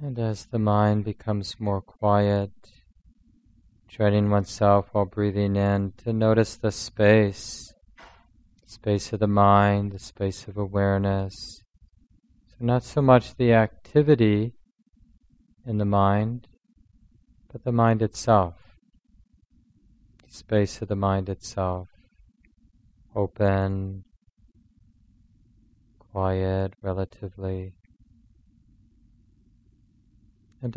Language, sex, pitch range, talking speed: English, male, 100-110 Hz, 95 wpm